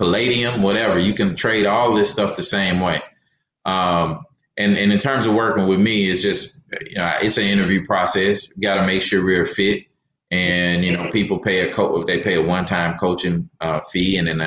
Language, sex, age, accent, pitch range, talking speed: English, male, 30-49, American, 85-105 Hz, 210 wpm